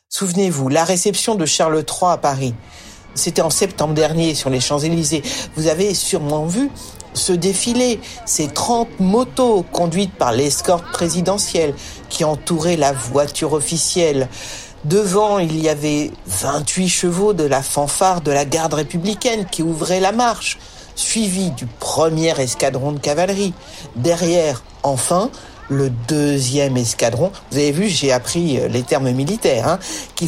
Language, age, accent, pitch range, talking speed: French, 60-79, French, 140-185 Hz, 140 wpm